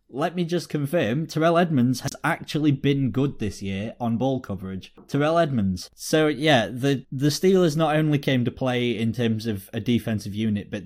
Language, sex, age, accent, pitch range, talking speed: English, male, 20-39, British, 115-150 Hz, 190 wpm